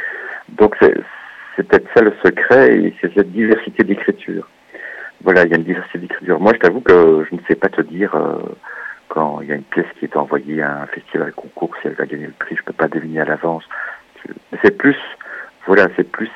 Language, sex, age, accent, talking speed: French, male, 60-79, French, 225 wpm